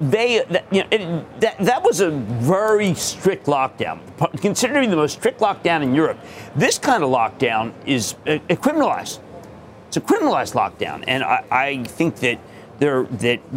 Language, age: English, 50-69